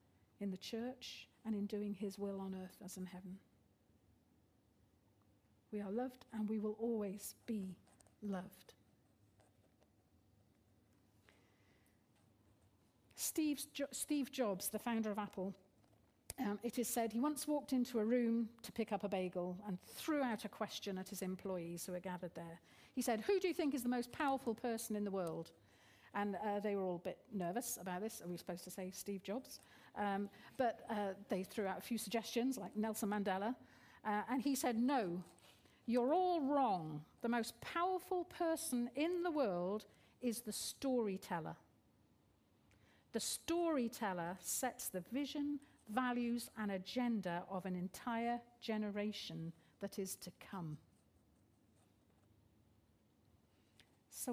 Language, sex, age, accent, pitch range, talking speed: English, female, 50-69, British, 145-240 Hz, 150 wpm